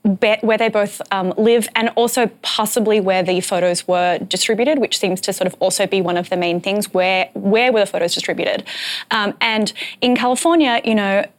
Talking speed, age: 195 wpm, 20-39